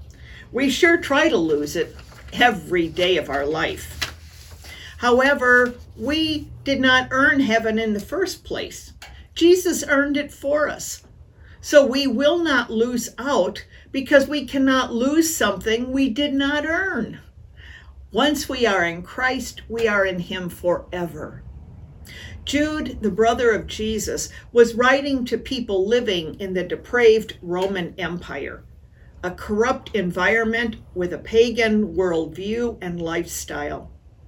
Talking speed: 130 wpm